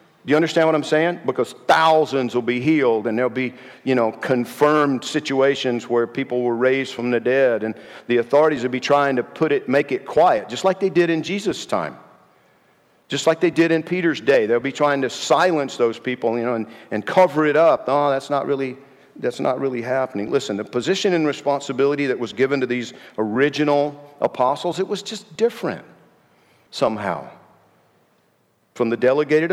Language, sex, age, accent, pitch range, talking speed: English, male, 50-69, American, 125-160 Hz, 185 wpm